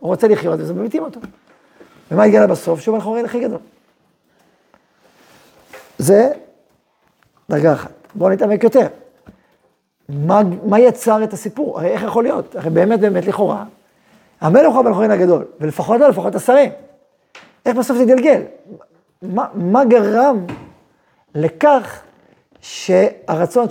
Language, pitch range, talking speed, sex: Hebrew, 190-255 Hz, 120 wpm, male